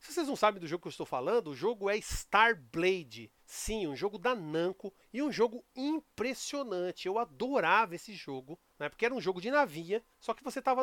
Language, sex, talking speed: Portuguese, male, 210 wpm